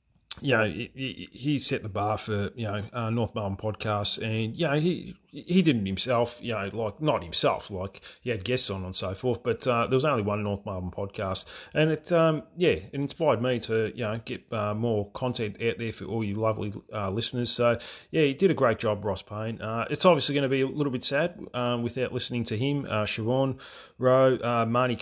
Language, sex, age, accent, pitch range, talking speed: English, male, 30-49, Australian, 105-130 Hz, 230 wpm